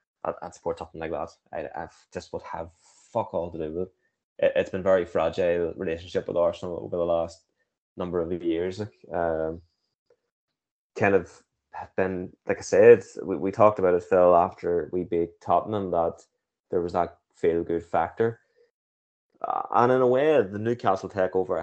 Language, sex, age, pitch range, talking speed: English, male, 20-39, 90-115 Hz, 165 wpm